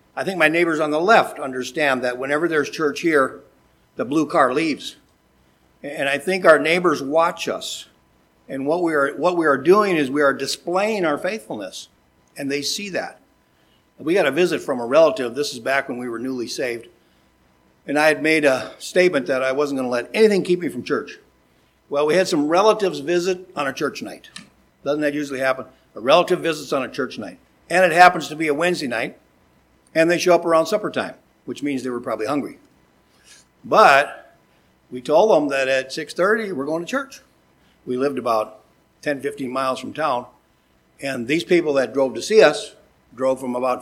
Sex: male